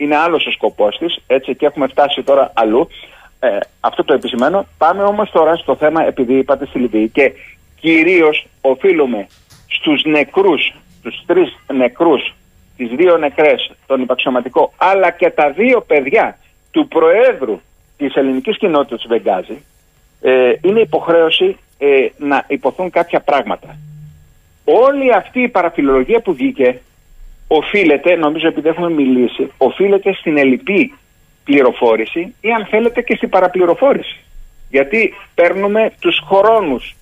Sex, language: male, Greek